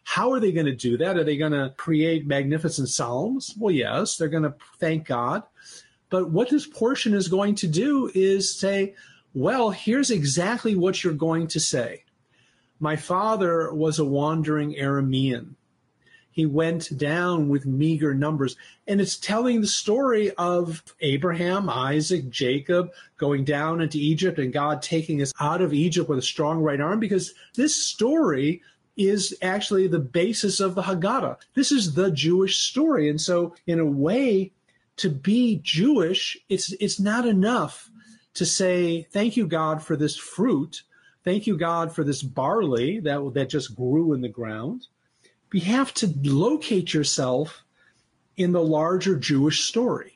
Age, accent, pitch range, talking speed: 40-59, American, 150-195 Hz, 160 wpm